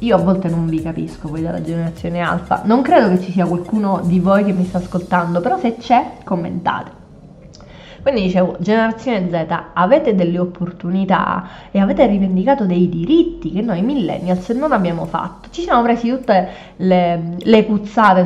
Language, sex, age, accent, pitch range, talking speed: Italian, female, 20-39, native, 170-200 Hz, 170 wpm